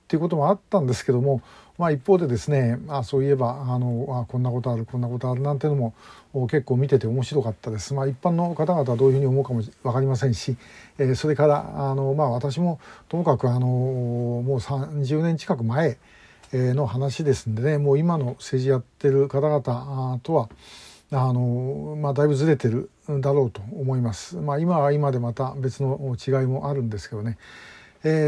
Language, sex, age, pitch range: Japanese, male, 50-69, 130-160 Hz